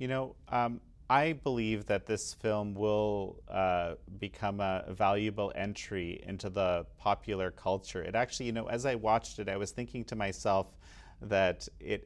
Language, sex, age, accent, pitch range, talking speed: English, male, 30-49, American, 95-110 Hz, 165 wpm